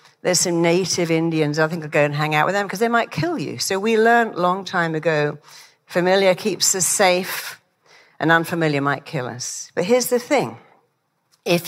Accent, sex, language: British, female, English